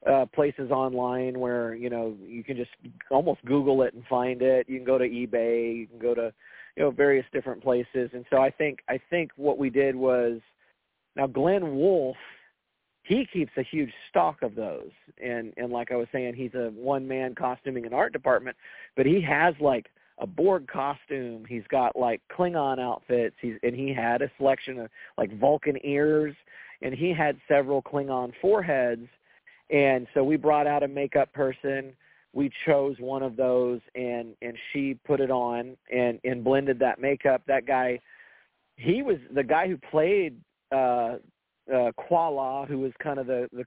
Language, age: English, 40-59